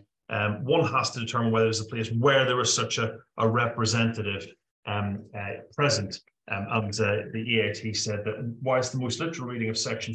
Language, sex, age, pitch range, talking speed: English, male, 30-49, 110-125 Hz, 195 wpm